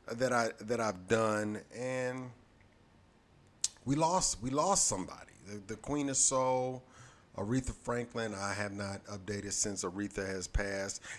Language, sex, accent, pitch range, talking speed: English, male, American, 100-130 Hz, 140 wpm